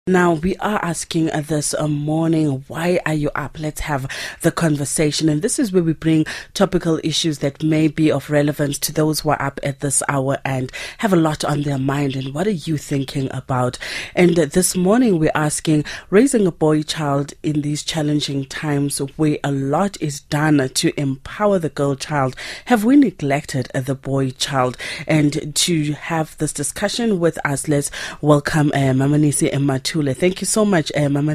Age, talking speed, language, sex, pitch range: 30-49, 190 wpm, English, female, 140-165 Hz